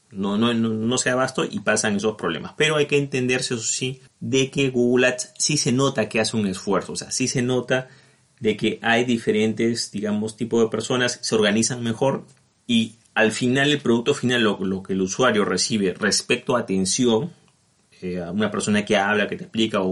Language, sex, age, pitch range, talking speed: Spanish, male, 30-49, 105-130 Hz, 205 wpm